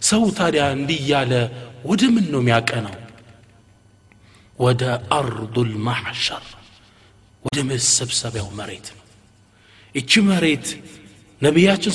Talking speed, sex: 70 wpm, male